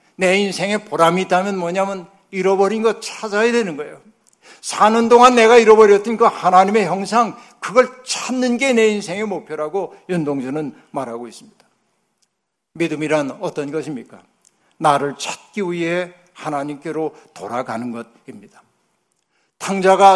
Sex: male